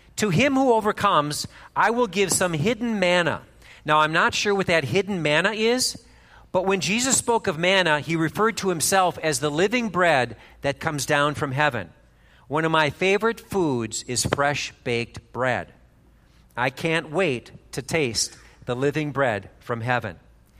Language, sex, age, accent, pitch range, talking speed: English, male, 50-69, American, 140-205 Hz, 165 wpm